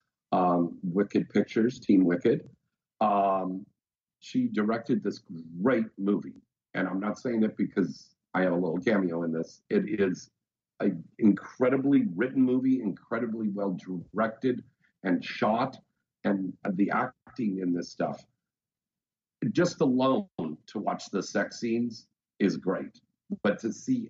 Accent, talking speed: American, 130 wpm